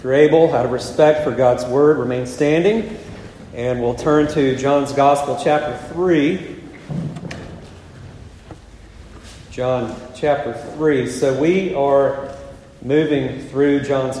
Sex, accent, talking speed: male, American, 120 wpm